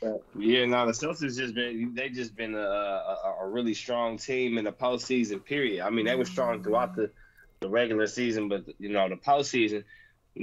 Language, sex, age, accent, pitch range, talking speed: English, male, 20-39, American, 105-125 Hz, 190 wpm